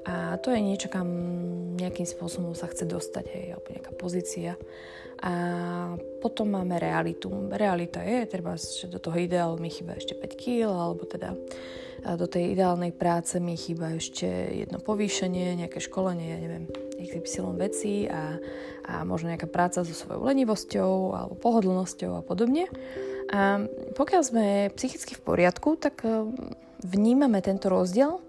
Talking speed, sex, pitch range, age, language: 145 wpm, female, 170-200 Hz, 20-39, Slovak